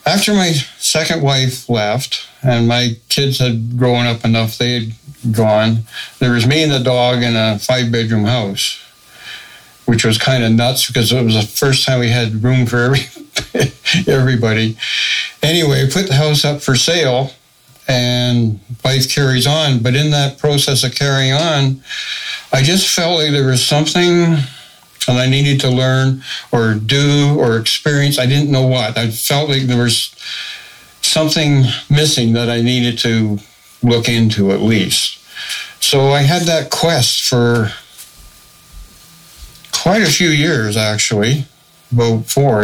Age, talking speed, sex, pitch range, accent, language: 60-79, 150 wpm, male, 120-140 Hz, American, English